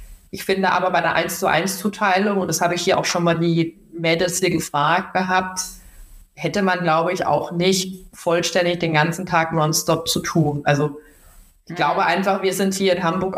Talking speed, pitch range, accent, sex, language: 180 wpm, 165-195 Hz, German, female, German